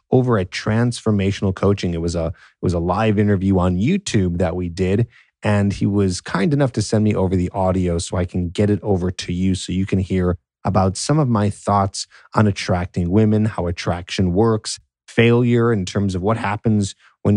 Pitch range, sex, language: 90-105 Hz, male, English